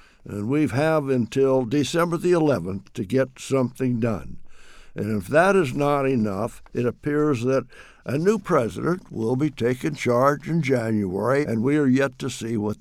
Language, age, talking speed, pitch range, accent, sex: English, 60-79, 170 wpm, 120-145 Hz, American, male